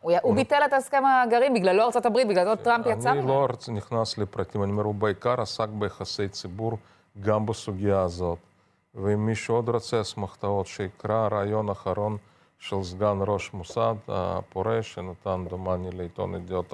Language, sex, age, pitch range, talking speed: Hebrew, male, 40-59, 95-110 Hz, 160 wpm